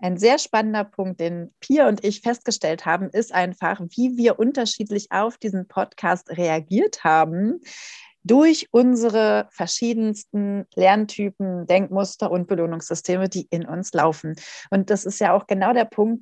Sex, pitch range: female, 180-225 Hz